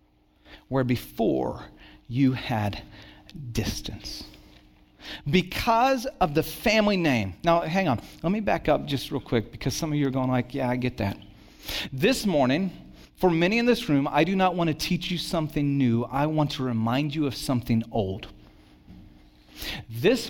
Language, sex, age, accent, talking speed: English, male, 40-59, American, 165 wpm